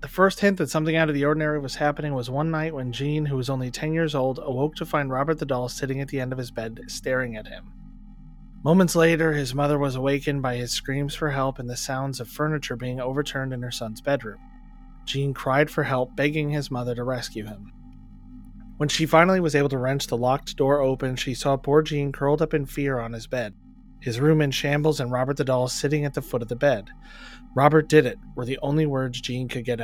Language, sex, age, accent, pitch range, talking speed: English, male, 30-49, American, 125-150 Hz, 235 wpm